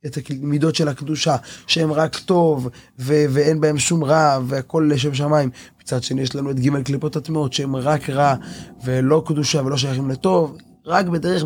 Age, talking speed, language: 20-39, 175 wpm, Hebrew